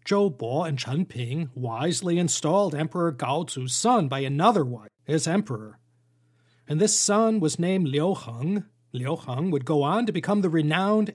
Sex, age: male, 40-59